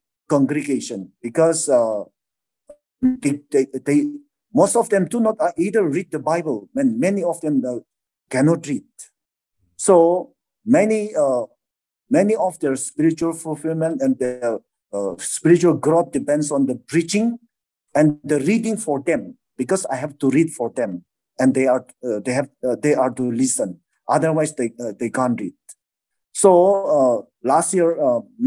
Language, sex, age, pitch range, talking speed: English, male, 50-69, 130-205 Hz, 150 wpm